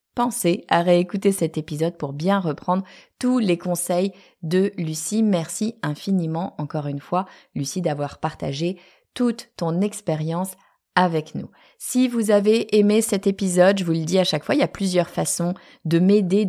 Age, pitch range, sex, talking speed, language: 30-49, 150-200 Hz, female, 165 wpm, French